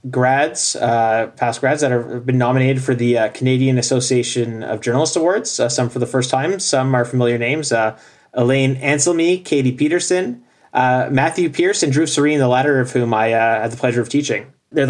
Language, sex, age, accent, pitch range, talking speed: English, male, 20-39, American, 120-140 Hz, 195 wpm